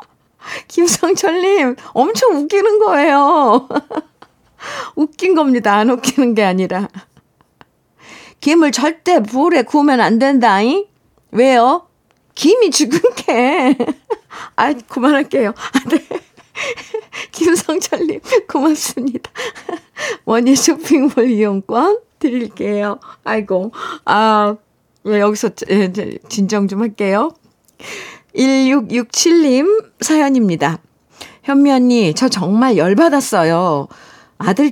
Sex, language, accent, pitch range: female, Korean, native, 210-320 Hz